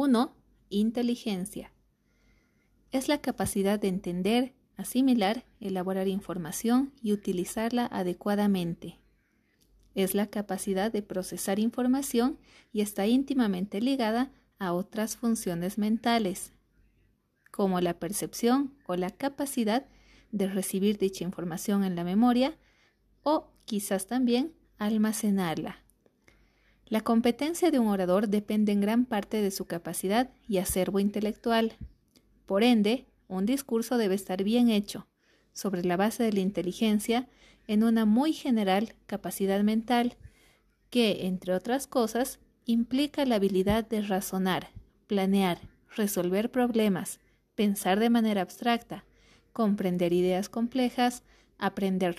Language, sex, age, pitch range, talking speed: Spanish, female, 30-49, 190-240 Hz, 115 wpm